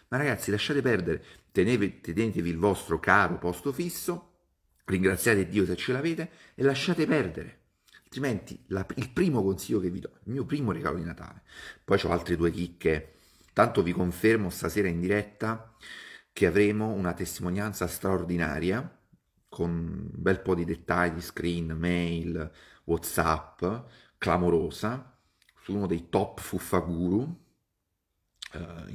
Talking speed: 135 wpm